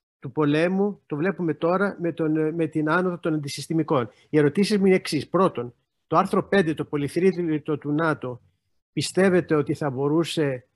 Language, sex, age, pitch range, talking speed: Greek, male, 50-69, 145-170 Hz, 155 wpm